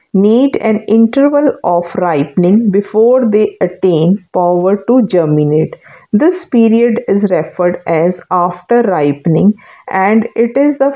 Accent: Indian